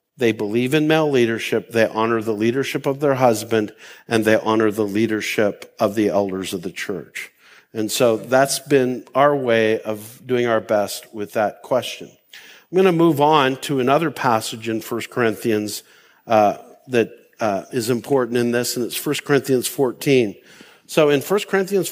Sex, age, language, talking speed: male, 50-69, English, 170 wpm